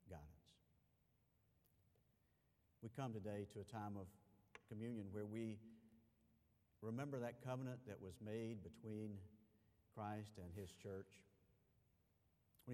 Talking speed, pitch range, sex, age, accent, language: 110 wpm, 100-125 Hz, male, 50-69, American, English